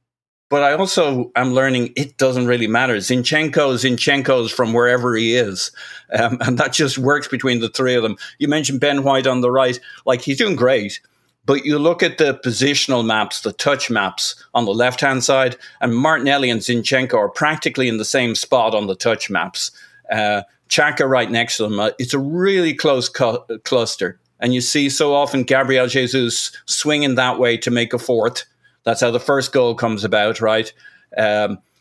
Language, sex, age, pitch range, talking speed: English, male, 50-69, 120-135 Hz, 190 wpm